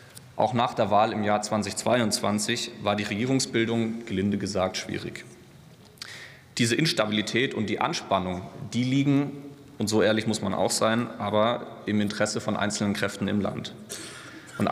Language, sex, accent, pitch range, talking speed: German, male, German, 100-120 Hz, 145 wpm